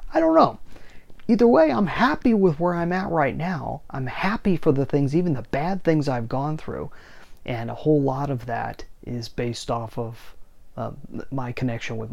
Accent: American